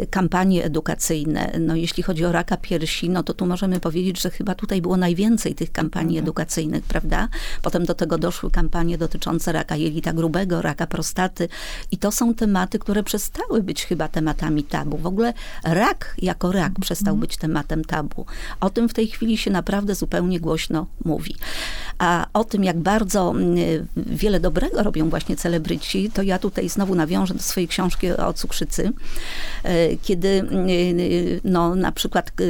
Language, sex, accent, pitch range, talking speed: Polish, female, native, 170-195 Hz, 160 wpm